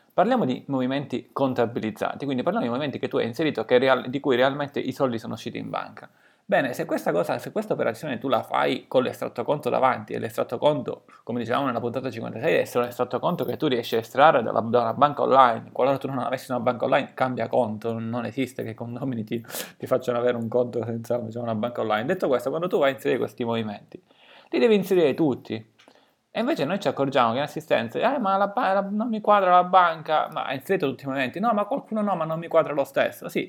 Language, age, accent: Italian, 20-39, native